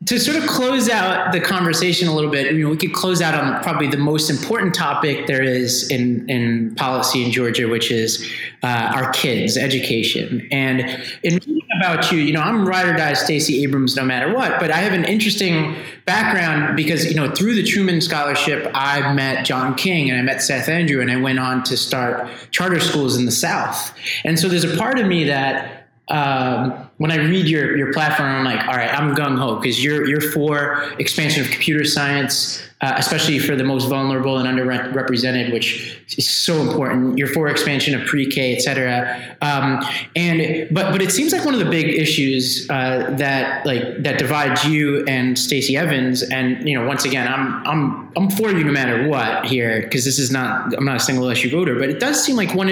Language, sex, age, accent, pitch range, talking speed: English, male, 30-49, American, 130-165 Hz, 210 wpm